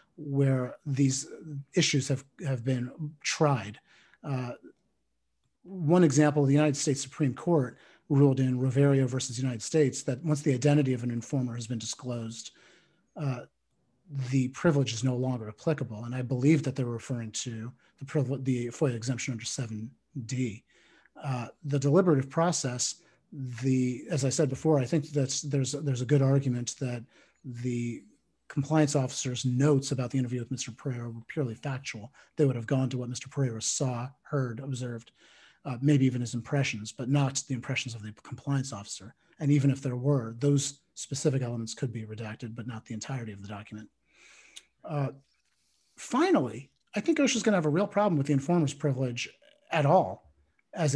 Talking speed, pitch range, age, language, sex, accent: 170 wpm, 125-145 Hz, 40-59, English, male, American